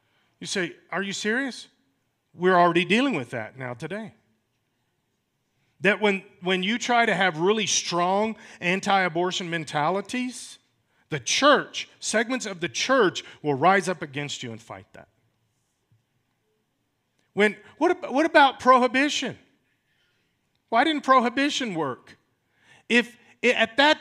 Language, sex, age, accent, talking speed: English, male, 40-59, American, 125 wpm